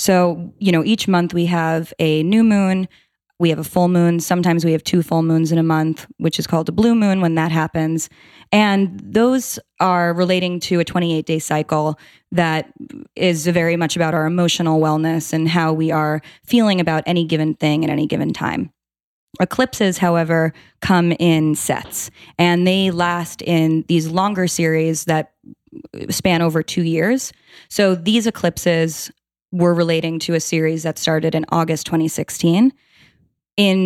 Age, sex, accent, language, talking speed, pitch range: 20-39, female, American, English, 165 wpm, 160-185 Hz